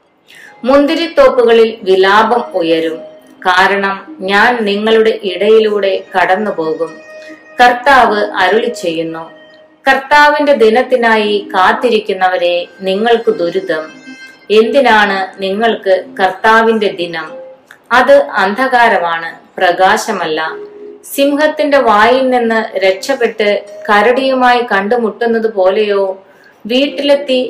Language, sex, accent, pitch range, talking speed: Malayalam, female, native, 190-250 Hz, 70 wpm